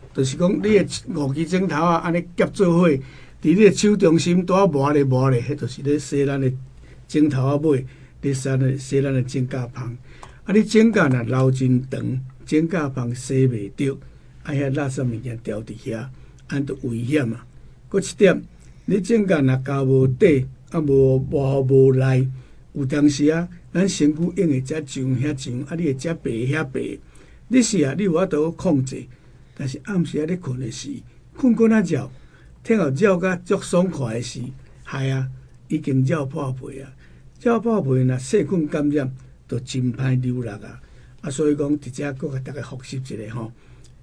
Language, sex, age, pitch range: Chinese, male, 60-79, 130-160 Hz